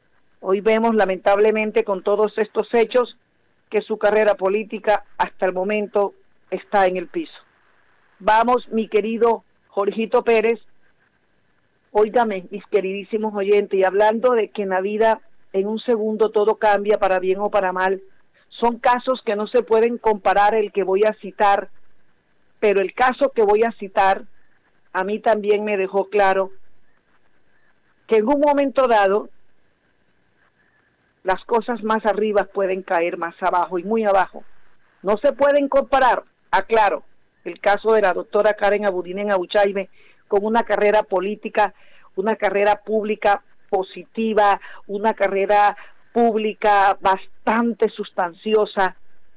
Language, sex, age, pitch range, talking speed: Spanish, female, 50-69, 195-220 Hz, 135 wpm